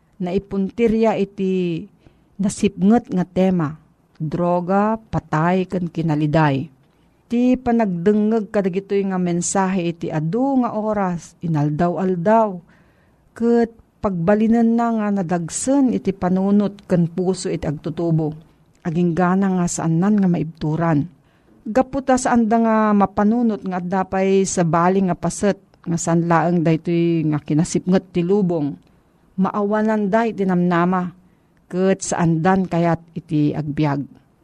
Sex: female